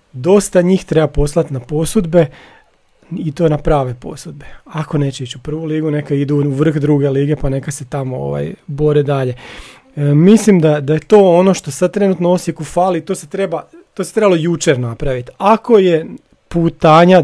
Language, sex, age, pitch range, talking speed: Croatian, male, 30-49, 145-180 Hz, 180 wpm